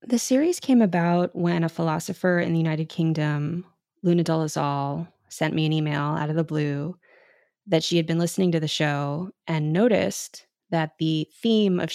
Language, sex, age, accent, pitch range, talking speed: English, female, 20-39, American, 155-185 Hz, 175 wpm